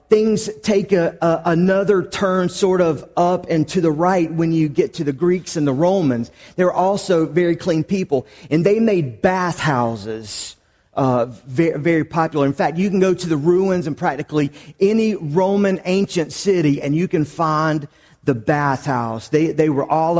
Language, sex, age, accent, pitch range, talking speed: English, male, 40-59, American, 135-175 Hz, 170 wpm